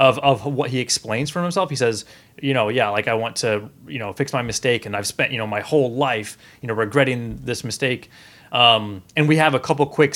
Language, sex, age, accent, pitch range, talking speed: English, male, 30-49, American, 110-140 Hz, 240 wpm